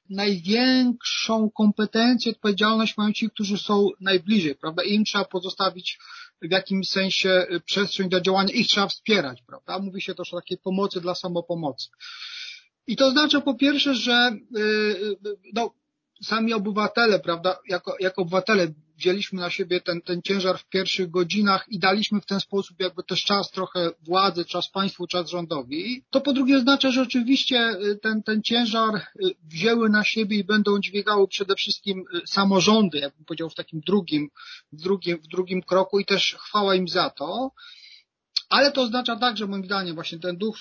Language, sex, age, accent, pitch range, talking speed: Polish, male, 30-49, native, 185-220 Hz, 160 wpm